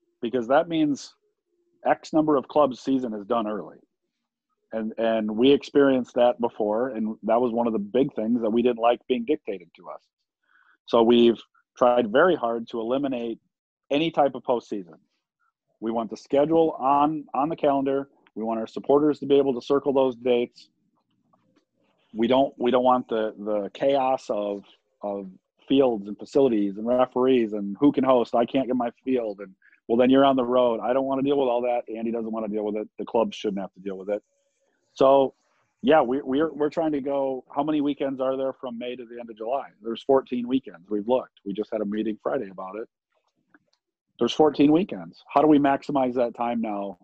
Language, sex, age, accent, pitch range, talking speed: English, male, 40-59, American, 110-140 Hz, 205 wpm